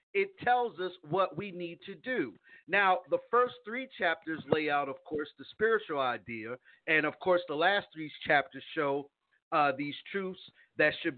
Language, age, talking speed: English, 50-69, 175 wpm